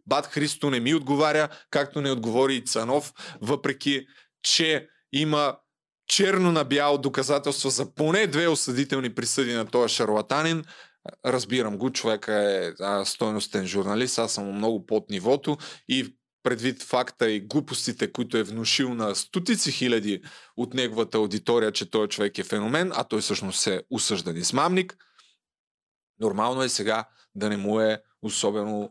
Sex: male